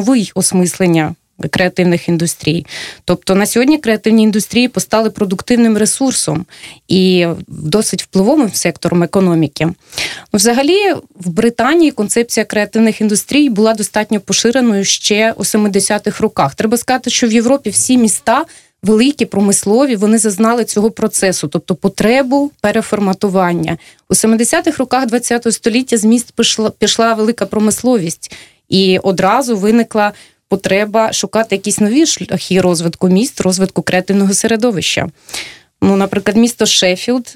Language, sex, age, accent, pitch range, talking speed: Russian, female, 20-39, native, 190-235 Hz, 120 wpm